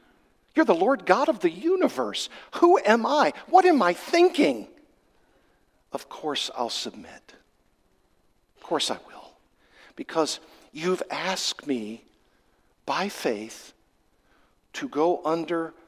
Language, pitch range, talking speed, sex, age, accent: English, 125-175 Hz, 115 wpm, male, 50-69, American